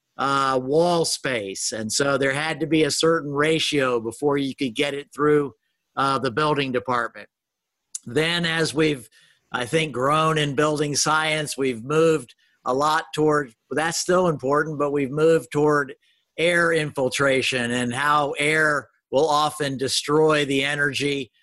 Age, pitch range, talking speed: 50-69, 135-160 Hz, 150 wpm